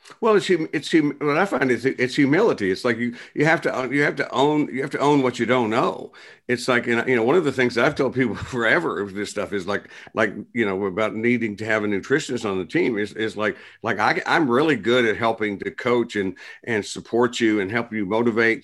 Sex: male